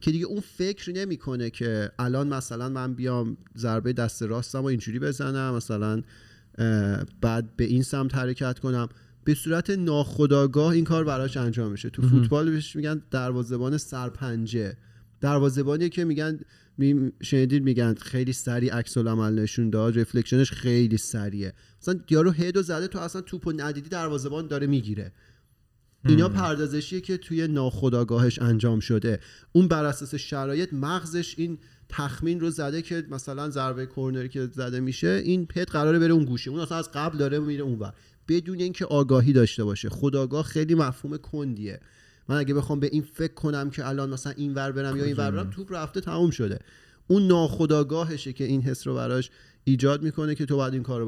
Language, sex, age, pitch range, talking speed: Persian, male, 30-49, 120-155 Hz, 160 wpm